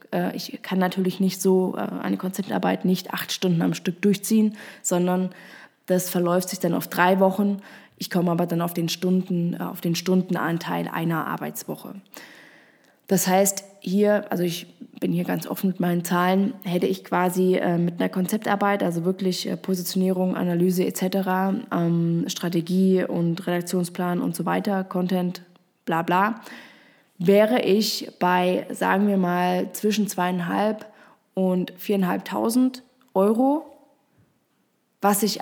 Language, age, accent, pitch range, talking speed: German, 20-39, German, 180-215 Hz, 130 wpm